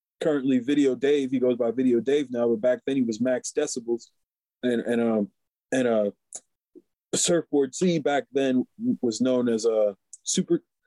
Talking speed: 170 wpm